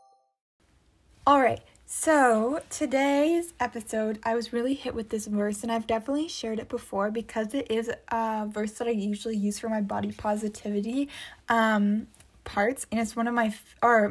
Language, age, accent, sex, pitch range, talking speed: English, 20-39, American, female, 215-260 Hz, 155 wpm